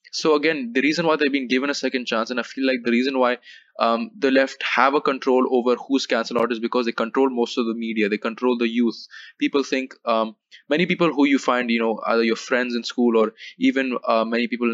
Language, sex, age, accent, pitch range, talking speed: English, male, 20-39, Indian, 115-130 Hz, 245 wpm